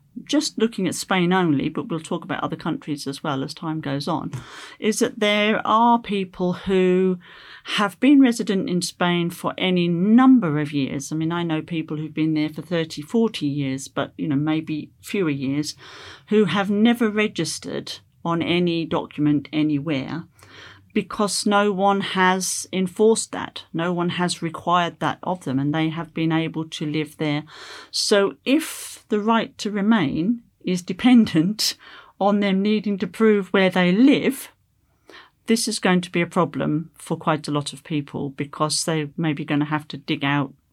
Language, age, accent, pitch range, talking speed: English, 40-59, British, 150-205 Hz, 175 wpm